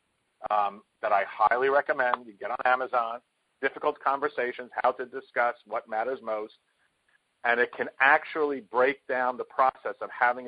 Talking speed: 155 wpm